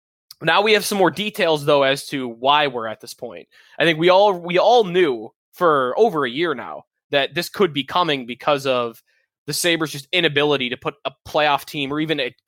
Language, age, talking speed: English, 20-39, 215 wpm